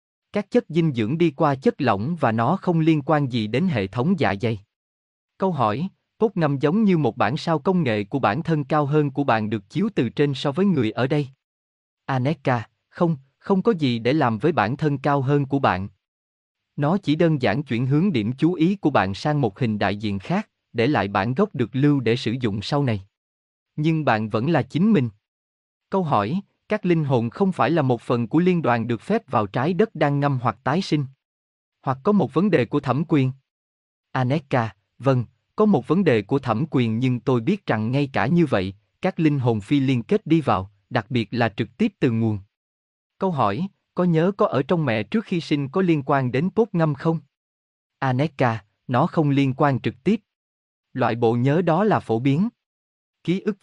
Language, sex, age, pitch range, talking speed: Vietnamese, male, 20-39, 115-165 Hz, 215 wpm